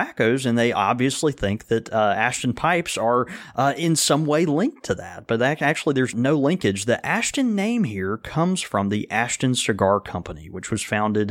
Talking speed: 180 wpm